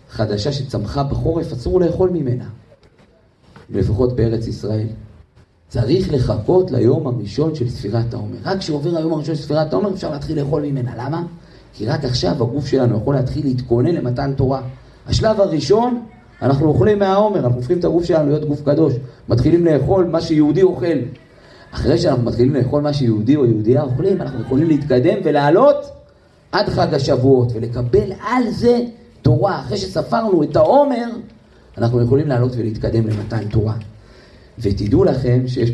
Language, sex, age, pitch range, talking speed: Hebrew, male, 40-59, 115-160 Hz, 140 wpm